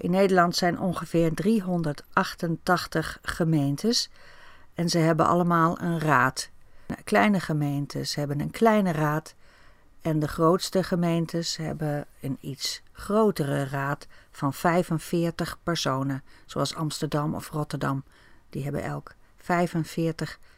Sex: female